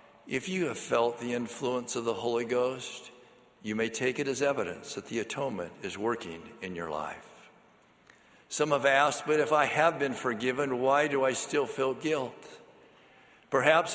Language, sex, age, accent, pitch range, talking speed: English, male, 50-69, American, 120-150 Hz, 170 wpm